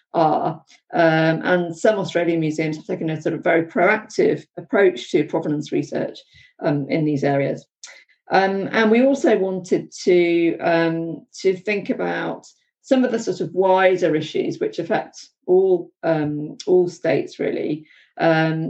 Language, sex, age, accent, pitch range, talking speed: English, female, 40-59, British, 150-185 Hz, 150 wpm